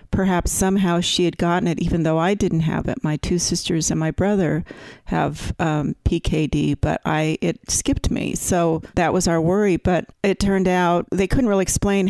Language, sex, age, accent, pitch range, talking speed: English, female, 40-59, American, 165-205 Hz, 195 wpm